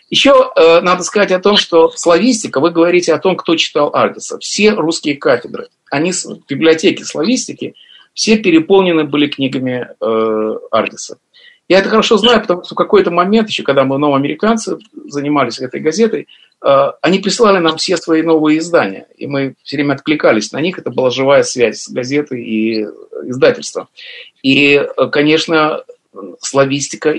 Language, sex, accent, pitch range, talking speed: Russian, male, native, 140-205 Hz, 155 wpm